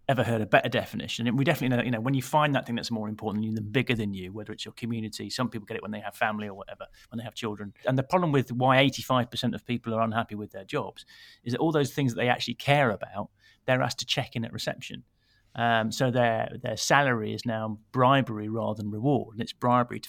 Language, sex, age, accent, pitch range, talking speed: English, male, 30-49, British, 110-130 Hz, 265 wpm